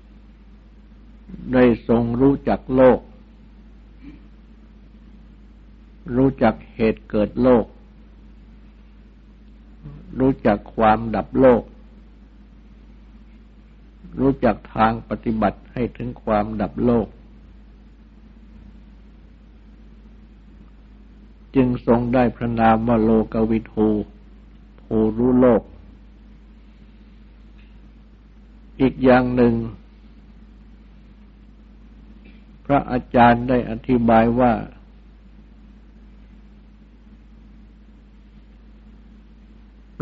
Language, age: Thai, 60-79